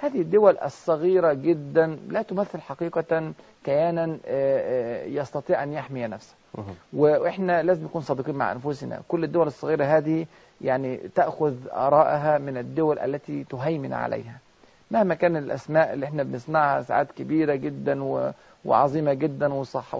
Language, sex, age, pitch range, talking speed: Arabic, male, 40-59, 140-170 Hz, 125 wpm